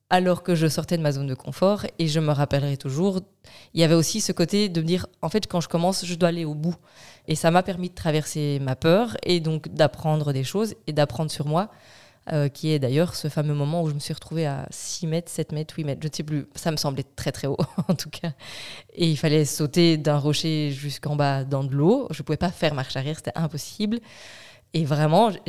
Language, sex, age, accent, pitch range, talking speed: French, female, 20-39, French, 145-175 Hz, 250 wpm